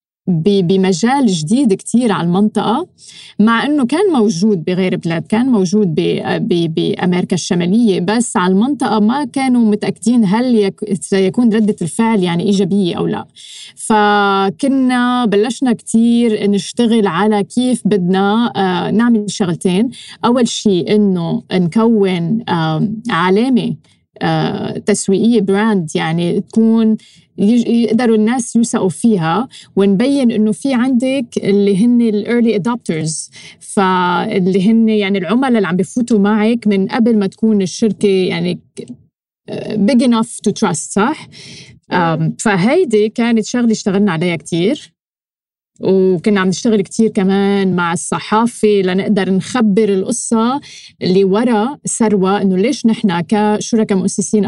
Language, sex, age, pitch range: Arabic, female, 20-39, 190-225 Hz